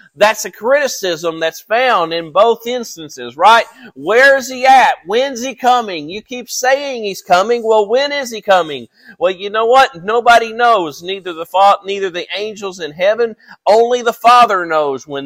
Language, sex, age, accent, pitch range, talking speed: English, male, 40-59, American, 170-235 Hz, 175 wpm